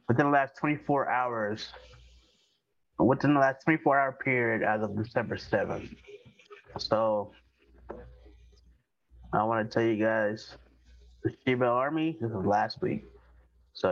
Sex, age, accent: male, 20-39, American